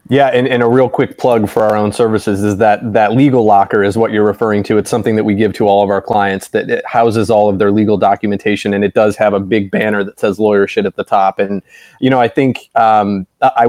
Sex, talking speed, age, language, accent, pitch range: male, 260 wpm, 30-49, English, American, 105-125 Hz